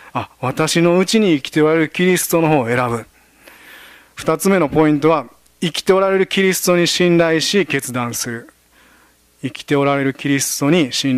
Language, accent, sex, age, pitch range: Japanese, native, male, 40-59, 130-175 Hz